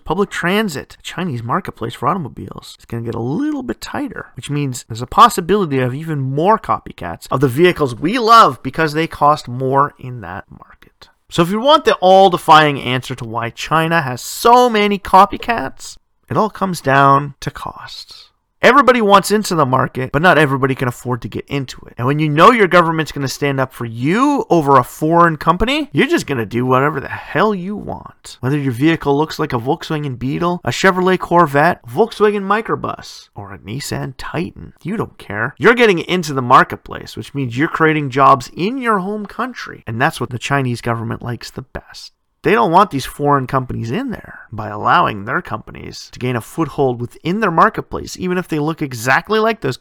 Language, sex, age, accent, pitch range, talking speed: English, male, 30-49, American, 130-185 Hz, 200 wpm